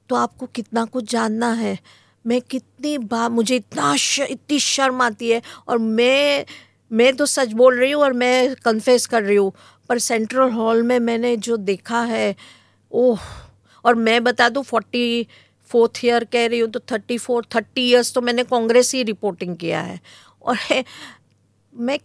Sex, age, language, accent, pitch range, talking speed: female, 50-69, English, Indian, 200-250 Hz, 105 wpm